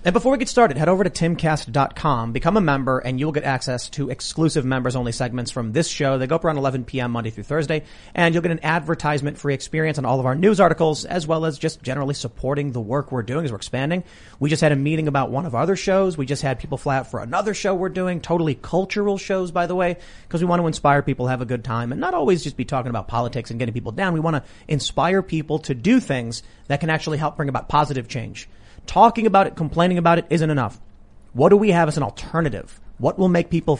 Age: 30-49